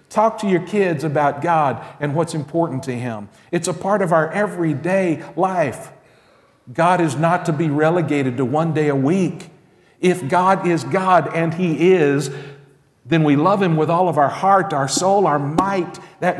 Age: 50-69